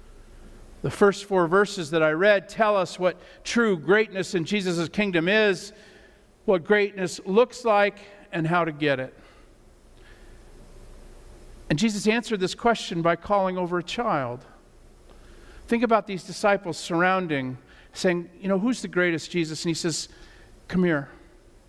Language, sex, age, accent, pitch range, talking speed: English, male, 50-69, American, 160-205 Hz, 145 wpm